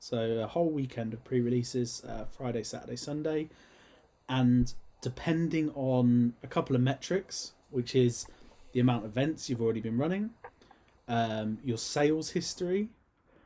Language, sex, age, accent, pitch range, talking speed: English, male, 30-49, British, 115-145 Hz, 140 wpm